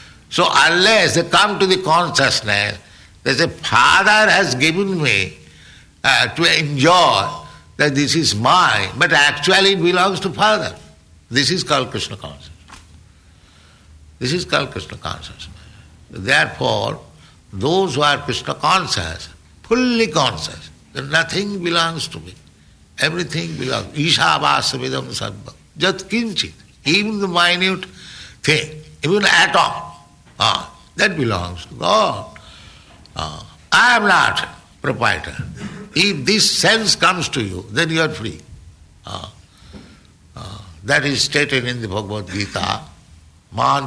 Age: 60-79